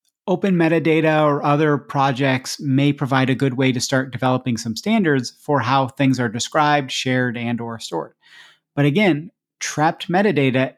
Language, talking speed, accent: English, 155 wpm, American